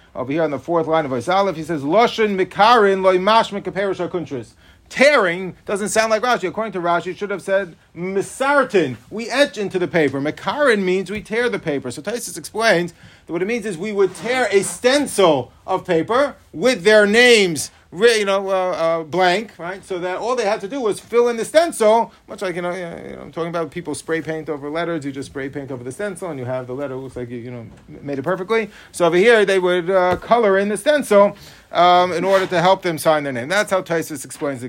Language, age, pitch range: English, 40-59, 155-200 Hz